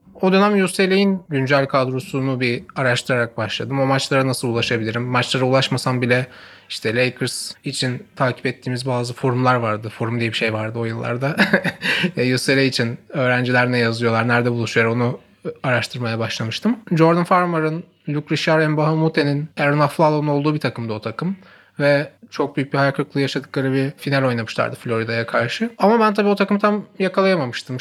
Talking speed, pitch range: 150 wpm, 125-165 Hz